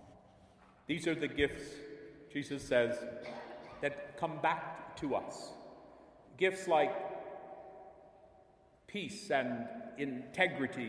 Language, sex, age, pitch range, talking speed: English, male, 50-69, 120-150 Hz, 90 wpm